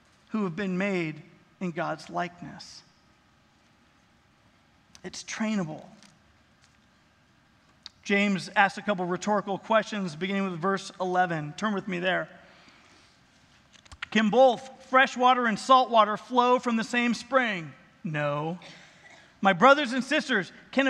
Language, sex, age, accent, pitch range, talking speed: English, male, 40-59, American, 190-255 Hz, 120 wpm